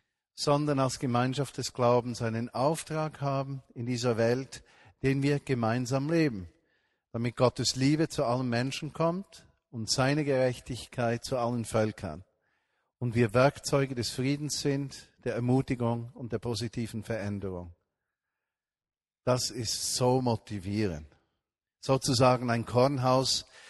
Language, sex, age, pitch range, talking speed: German, male, 40-59, 115-140 Hz, 120 wpm